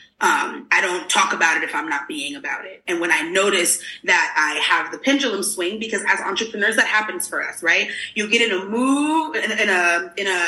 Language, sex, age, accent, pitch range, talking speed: English, female, 30-49, American, 190-270 Hz, 230 wpm